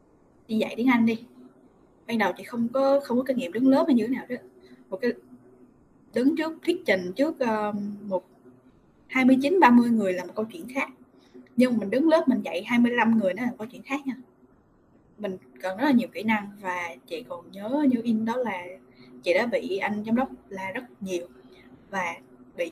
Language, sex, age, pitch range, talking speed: Vietnamese, female, 10-29, 185-260 Hz, 205 wpm